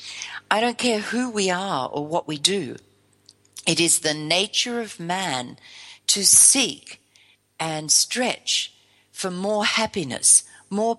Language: English